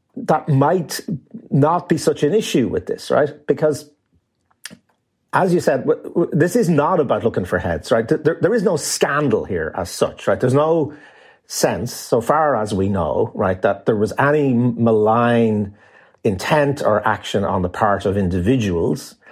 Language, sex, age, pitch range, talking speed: English, male, 40-59, 115-160 Hz, 165 wpm